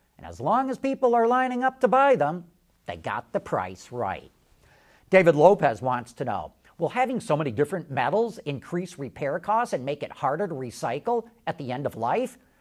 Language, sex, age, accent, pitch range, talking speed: English, male, 50-69, American, 155-240 Hz, 195 wpm